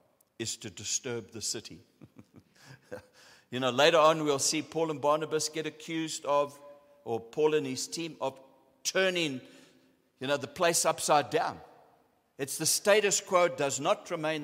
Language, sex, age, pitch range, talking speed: English, male, 60-79, 120-160 Hz, 155 wpm